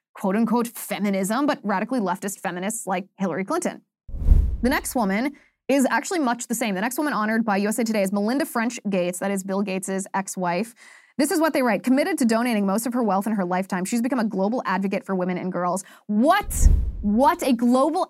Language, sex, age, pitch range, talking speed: English, female, 20-39, 205-290 Hz, 200 wpm